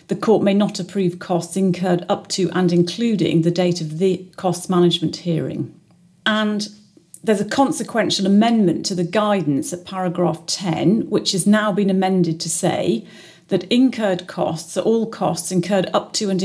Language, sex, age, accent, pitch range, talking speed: English, female, 40-59, British, 170-195 Hz, 170 wpm